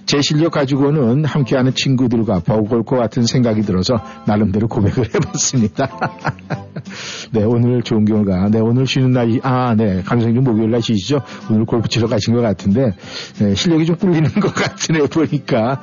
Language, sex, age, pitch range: Korean, male, 50-69, 105-140 Hz